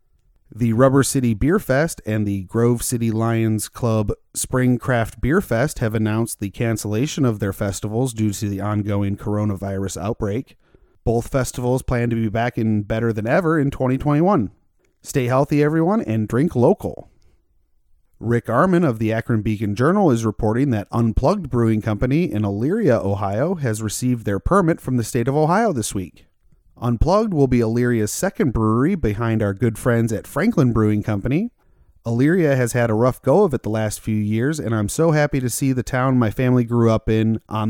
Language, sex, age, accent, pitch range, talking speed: English, male, 30-49, American, 110-130 Hz, 180 wpm